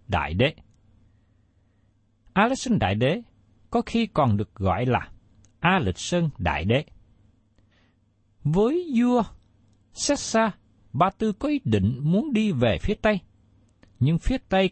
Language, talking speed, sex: Vietnamese, 120 wpm, male